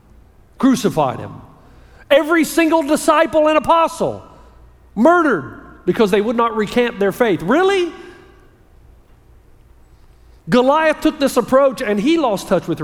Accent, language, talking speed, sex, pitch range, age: American, English, 115 wpm, male, 160-235 Hz, 50-69